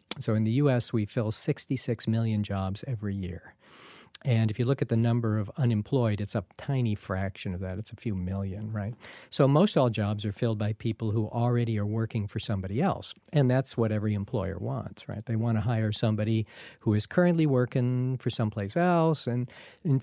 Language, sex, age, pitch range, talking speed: English, male, 50-69, 105-135 Hz, 200 wpm